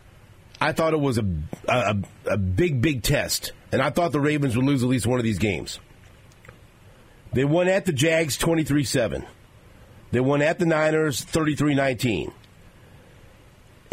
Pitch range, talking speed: 105-135 Hz, 150 wpm